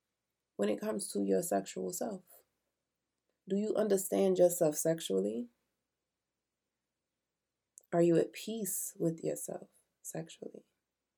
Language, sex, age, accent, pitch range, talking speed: English, female, 20-39, American, 155-200 Hz, 100 wpm